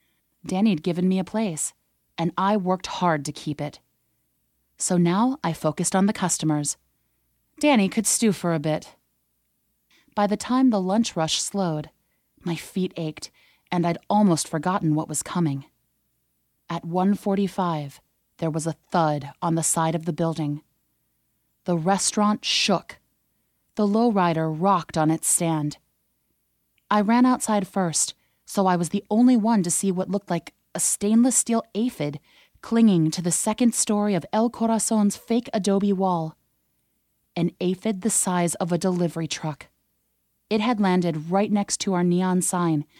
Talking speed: 155 wpm